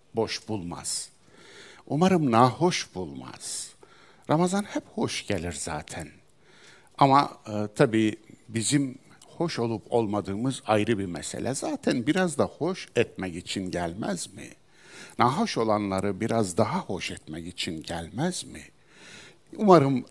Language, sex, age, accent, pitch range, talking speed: Turkish, male, 60-79, native, 100-150 Hz, 115 wpm